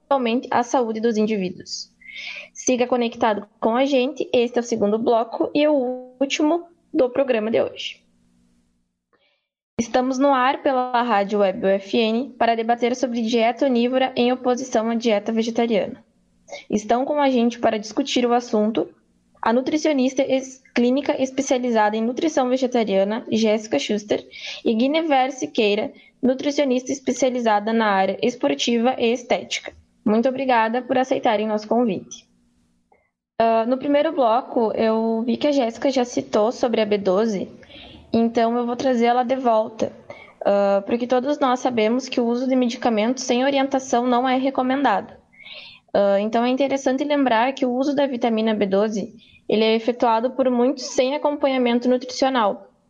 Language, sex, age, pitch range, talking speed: Portuguese, female, 10-29, 220-265 Hz, 145 wpm